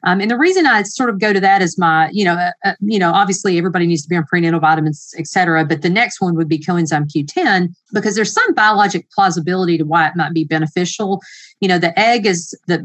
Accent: American